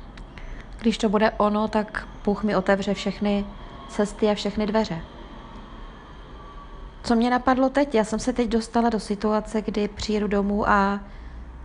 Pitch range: 185-215 Hz